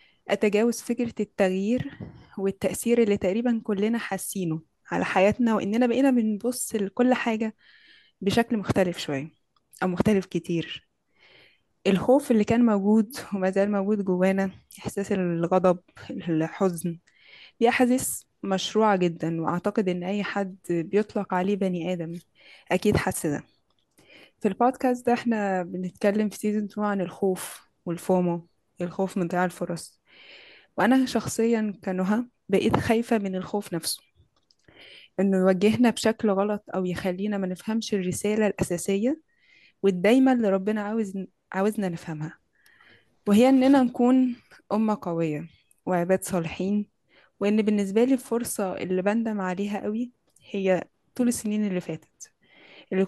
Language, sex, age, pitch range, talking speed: Arabic, female, 20-39, 185-225 Hz, 120 wpm